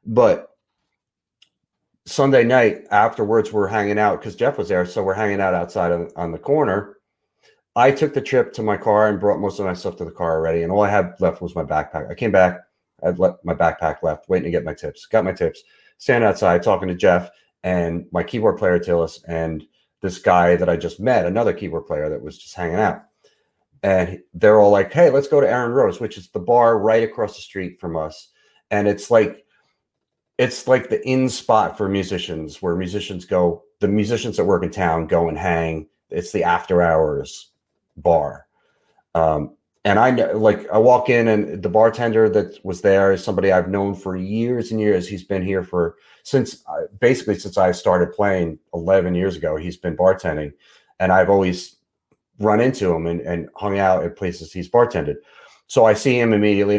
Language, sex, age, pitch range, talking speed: English, male, 40-59, 85-110 Hz, 200 wpm